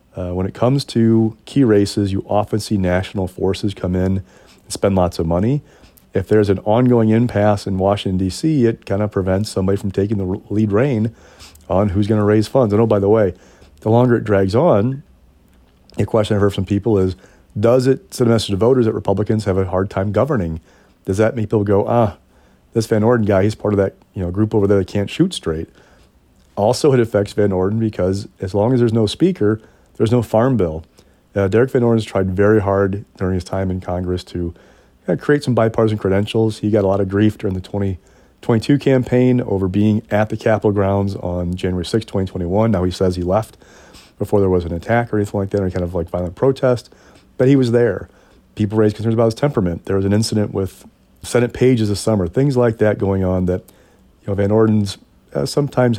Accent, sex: American, male